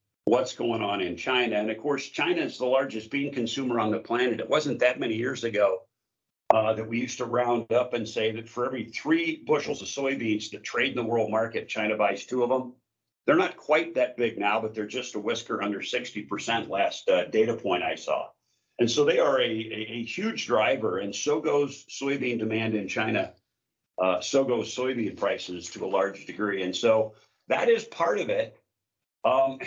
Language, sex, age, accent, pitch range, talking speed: English, male, 50-69, American, 110-140 Hz, 205 wpm